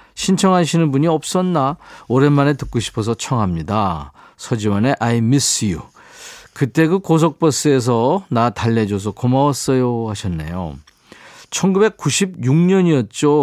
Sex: male